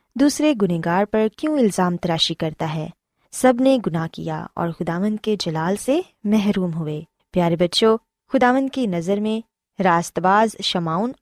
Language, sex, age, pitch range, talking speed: Urdu, female, 20-39, 175-255 Hz, 150 wpm